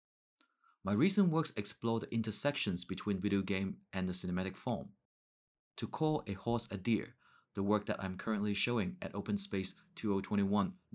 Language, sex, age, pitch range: Japanese, male, 30-49, 95-120 Hz